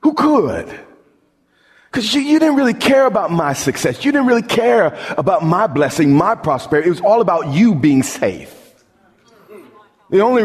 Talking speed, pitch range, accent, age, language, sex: 160 wpm, 160-220 Hz, American, 40-59, English, male